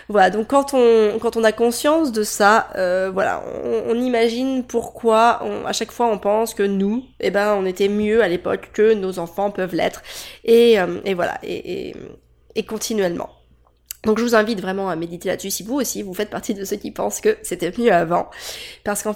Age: 20-39